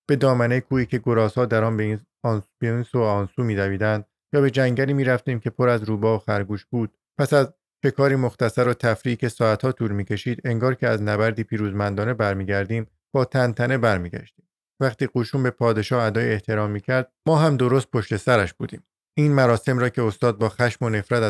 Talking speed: 185 wpm